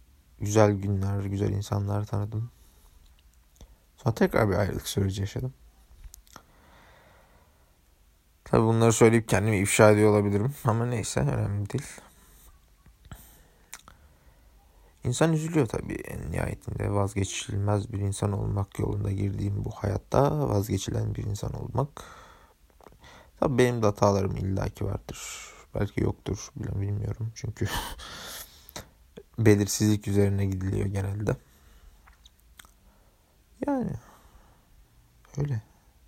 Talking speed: 95 wpm